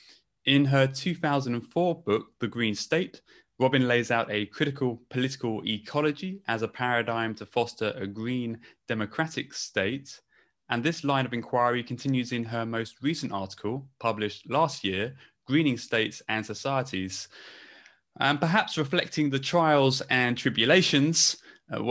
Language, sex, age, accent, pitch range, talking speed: English, male, 20-39, British, 115-140 Hz, 135 wpm